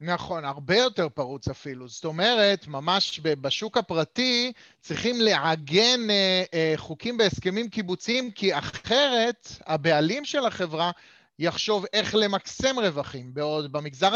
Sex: male